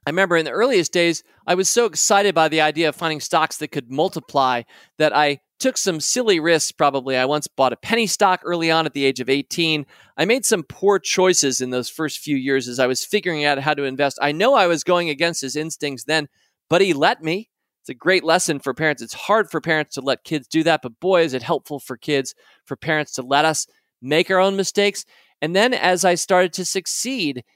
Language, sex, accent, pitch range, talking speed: English, male, American, 140-175 Hz, 235 wpm